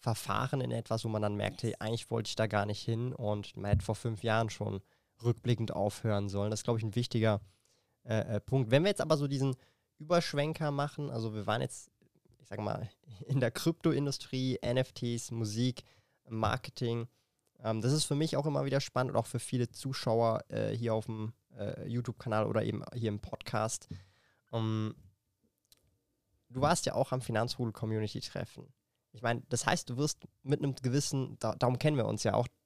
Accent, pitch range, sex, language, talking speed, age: German, 110-130 Hz, male, German, 180 wpm, 20-39